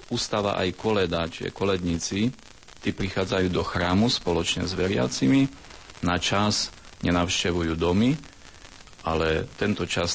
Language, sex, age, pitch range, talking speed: Slovak, male, 40-59, 80-95 Hz, 105 wpm